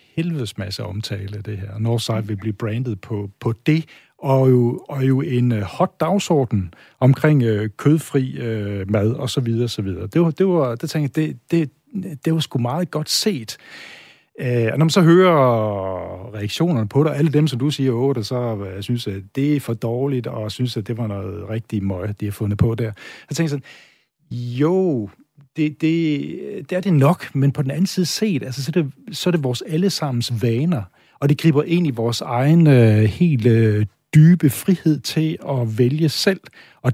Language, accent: Danish, native